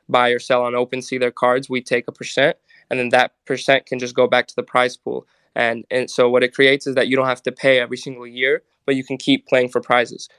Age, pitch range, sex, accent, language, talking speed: 20-39, 125-135 Hz, male, American, English, 270 wpm